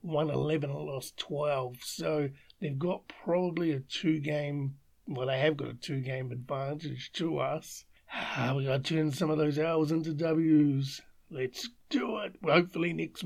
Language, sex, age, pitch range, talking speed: English, male, 50-69, 135-160 Hz, 160 wpm